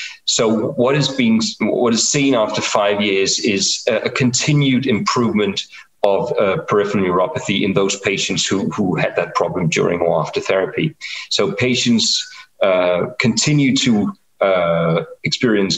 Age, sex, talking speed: 40-59, male, 145 wpm